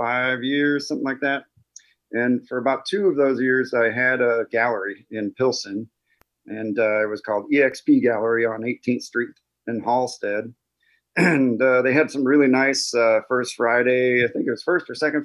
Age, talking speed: 30-49, 185 wpm